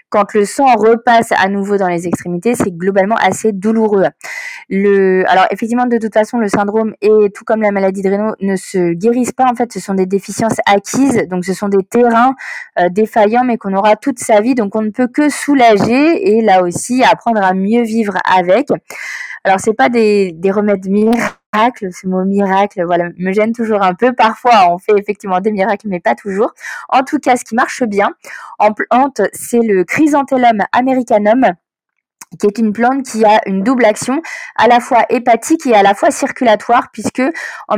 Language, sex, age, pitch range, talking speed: French, female, 20-39, 200-250 Hz, 200 wpm